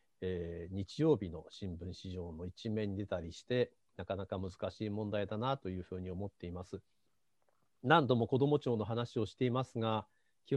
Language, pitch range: Japanese, 100-140 Hz